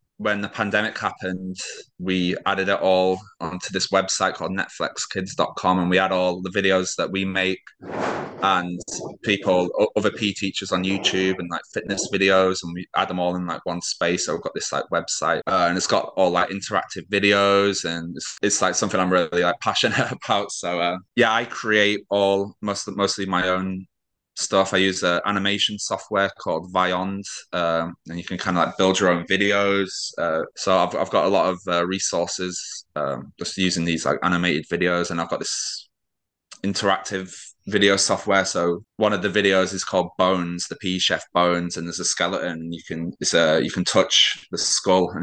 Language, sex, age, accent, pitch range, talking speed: English, male, 20-39, British, 90-100 Hz, 195 wpm